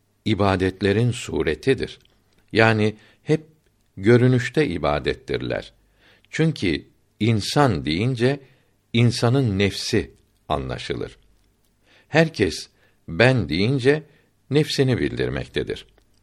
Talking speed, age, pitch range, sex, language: 65 wpm, 60-79, 100-120 Hz, male, Turkish